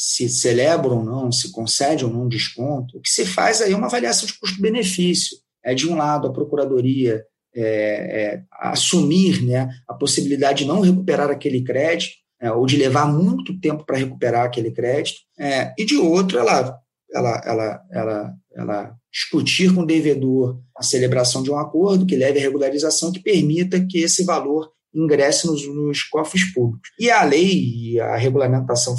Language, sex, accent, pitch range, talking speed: Portuguese, male, Brazilian, 125-165 Hz, 165 wpm